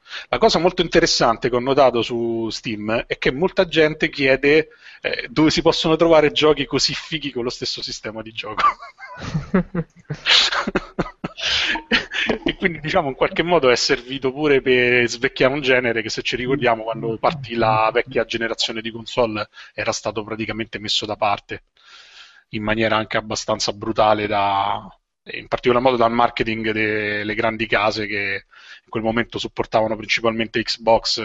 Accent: native